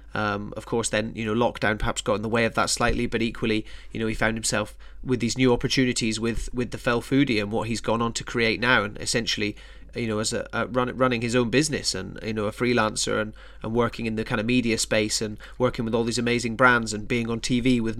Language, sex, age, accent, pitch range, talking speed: English, male, 30-49, British, 110-125 Hz, 255 wpm